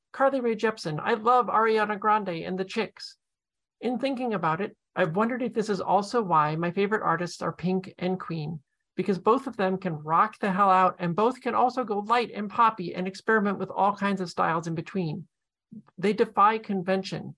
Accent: American